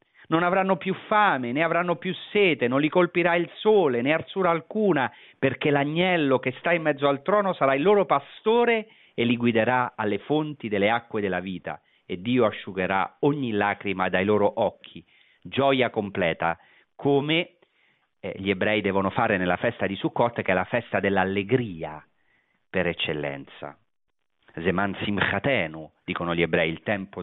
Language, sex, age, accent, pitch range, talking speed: Italian, male, 40-59, native, 105-170 Hz, 155 wpm